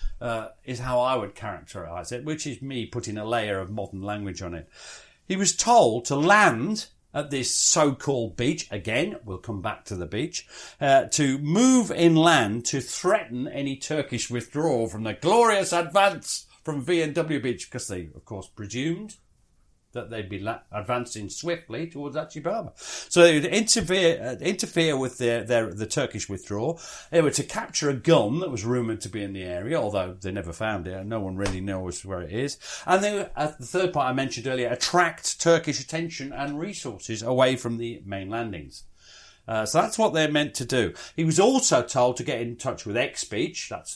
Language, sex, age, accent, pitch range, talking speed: English, male, 50-69, British, 110-160 Hz, 185 wpm